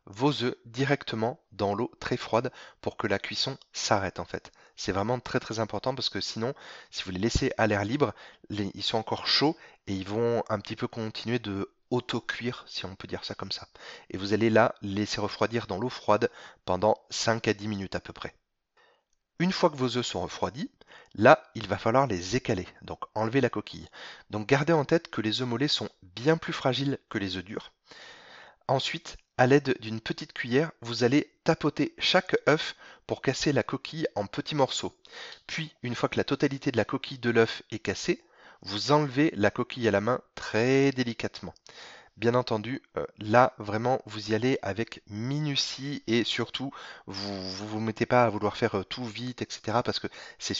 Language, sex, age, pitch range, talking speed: French, male, 30-49, 105-135 Hz, 195 wpm